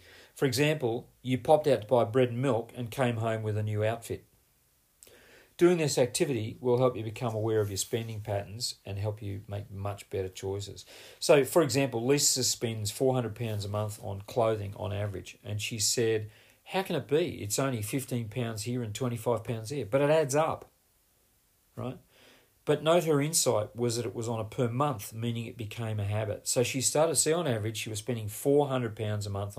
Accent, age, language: Australian, 40-59, English